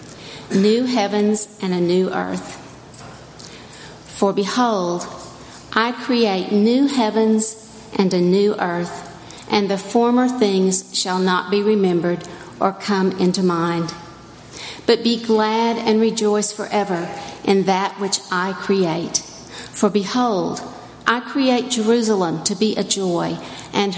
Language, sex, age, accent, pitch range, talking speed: English, female, 50-69, American, 175-210 Hz, 125 wpm